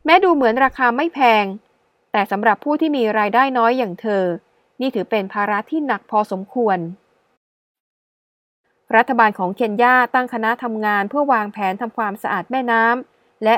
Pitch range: 205-250 Hz